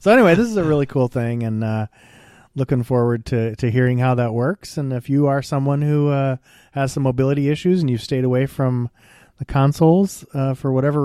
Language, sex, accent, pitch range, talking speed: English, male, American, 120-160 Hz, 210 wpm